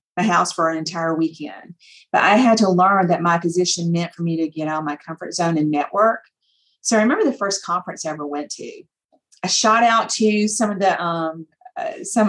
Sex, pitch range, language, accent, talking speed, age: female, 170-210 Hz, English, American, 200 wpm, 40-59